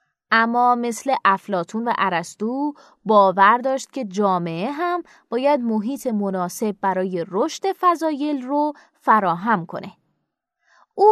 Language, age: Persian, 20-39